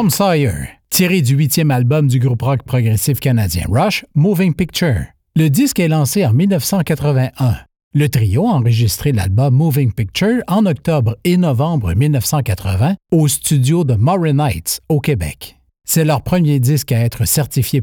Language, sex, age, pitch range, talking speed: French, male, 50-69, 115-160 Hz, 155 wpm